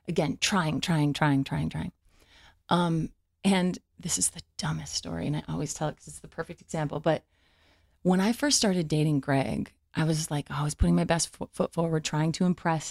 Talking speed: 210 wpm